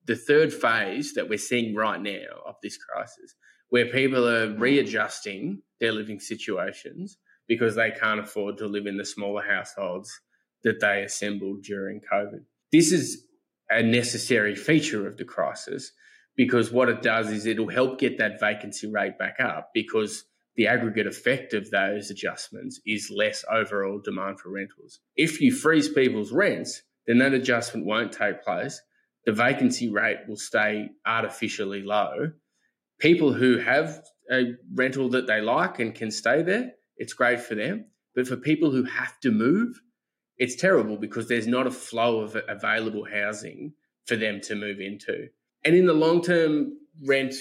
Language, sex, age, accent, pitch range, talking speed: English, male, 20-39, Australian, 110-140 Hz, 160 wpm